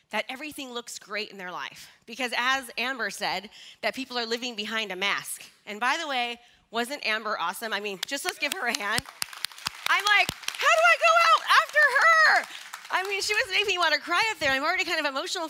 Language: English